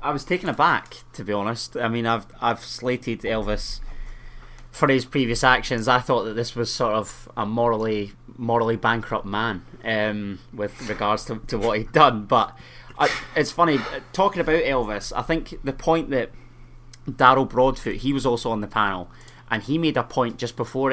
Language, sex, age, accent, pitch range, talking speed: English, male, 20-39, British, 110-130 Hz, 185 wpm